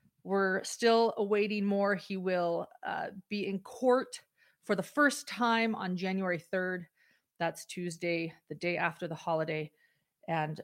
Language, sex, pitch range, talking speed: English, female, 180-215 Hz, 140 wpm